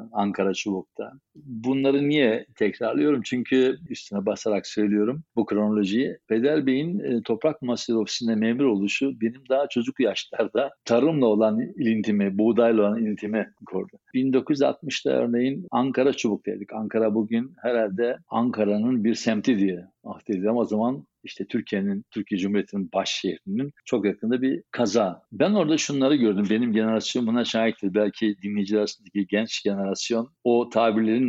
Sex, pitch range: male, 105-125 Hz